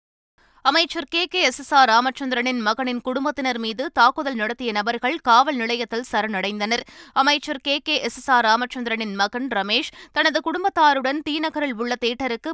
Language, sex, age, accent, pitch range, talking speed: Tamil, female, 20-39, native, 225-285 Hz, 125 wpm